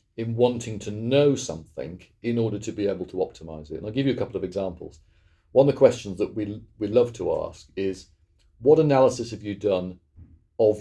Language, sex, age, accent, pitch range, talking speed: English, male, 40-59, British, 90-120 Hz, 210 wpm